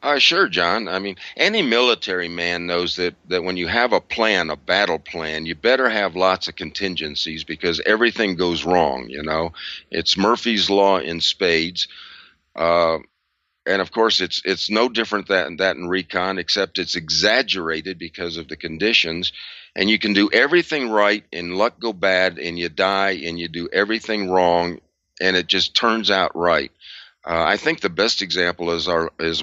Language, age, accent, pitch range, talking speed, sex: English, 50-69, American, 85-100 Hz, 180 wpm, male